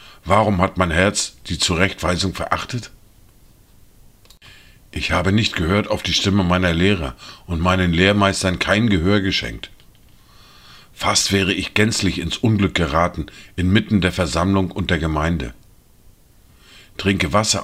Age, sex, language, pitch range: 50-69, male, German, 90-105 Hz